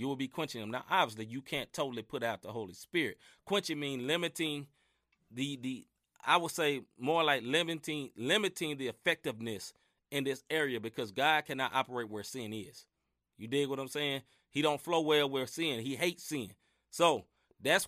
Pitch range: 105-145 Hz